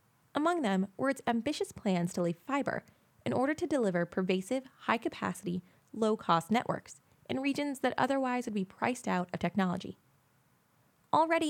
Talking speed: 145 wpm